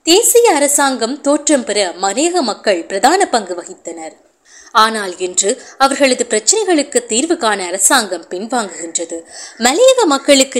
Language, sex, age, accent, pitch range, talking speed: Tamil, female, 20-39, native, 195-305 Hz, 110 wpm